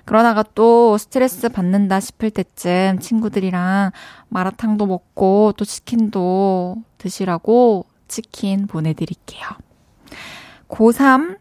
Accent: native